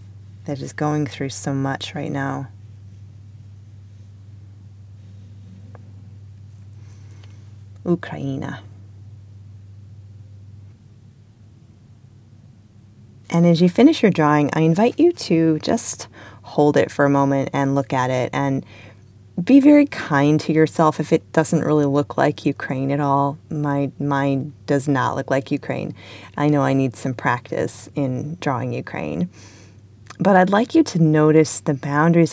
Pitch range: 105-155 Hz